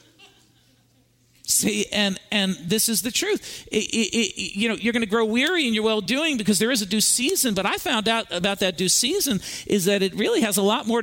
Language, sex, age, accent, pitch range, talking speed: English, male, 50-69, American, 190-240 Hz, 210 wpm